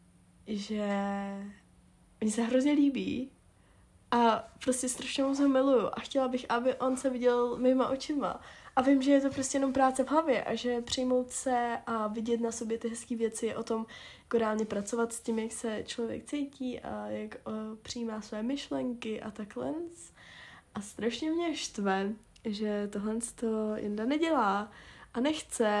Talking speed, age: 165 wpm, 20-39